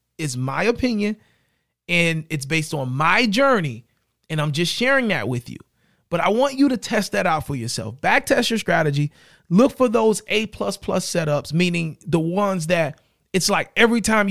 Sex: male